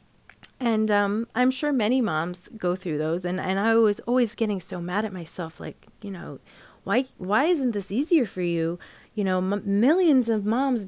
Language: English